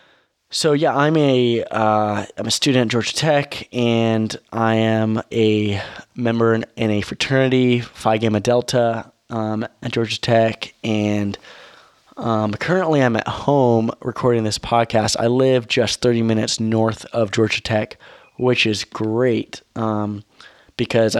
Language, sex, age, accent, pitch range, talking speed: English, male, 20-39, American, 110-125 Hz, 135 wpm